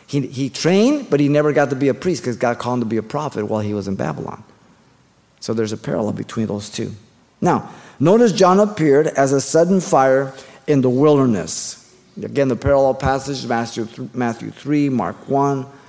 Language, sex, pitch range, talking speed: English, male, 115-140 Hz, 190 wpm